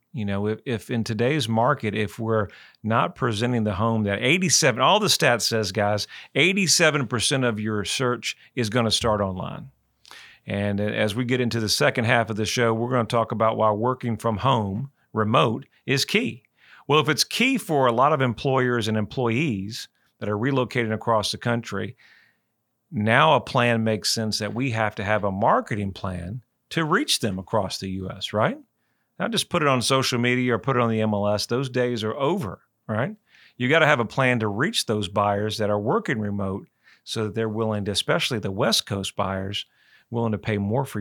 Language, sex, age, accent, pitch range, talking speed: English, male, 40-59, American, 105-125 Hz, 200 wpm